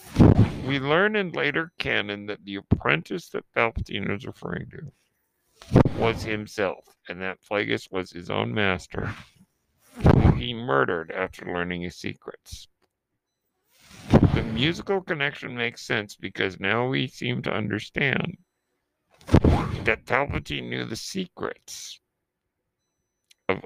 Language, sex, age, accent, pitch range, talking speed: English, male, 50-69, American, 90-110 Hz, 115 wpm